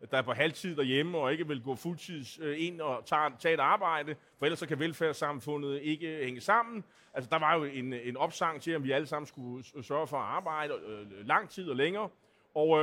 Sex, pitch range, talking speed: male, 135-170 Hz, 205 wpm